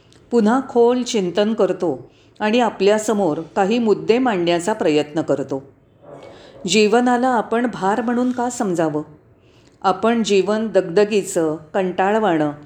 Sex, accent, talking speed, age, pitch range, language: female, native, 100 wpm, 40-59, 165-240 Hz, Marathi